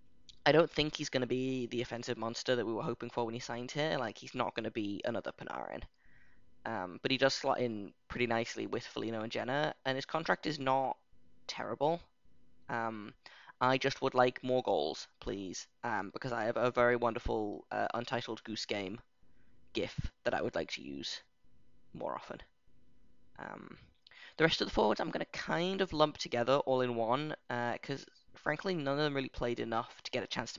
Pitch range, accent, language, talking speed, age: 120-135 Hz, British, English, 200 wpm, 10-29